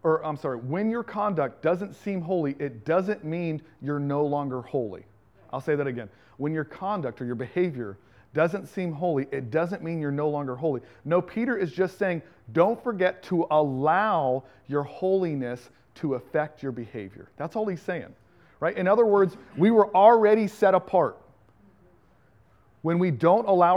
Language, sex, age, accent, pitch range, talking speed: English, male, 40-59, American, 130-180 Hz, 170 wpm